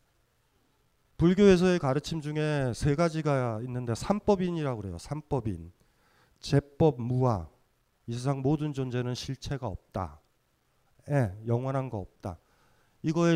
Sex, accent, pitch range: male, native, 130-180 Hz